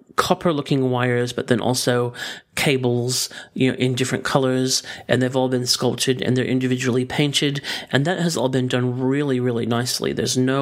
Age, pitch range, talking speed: 40-59, 125-145 Hz, 175 wpm